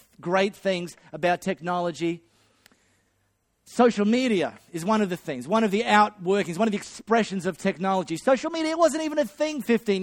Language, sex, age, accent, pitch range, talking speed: English, male, 30-49, Australian, 170-215 Hz, 170 wpm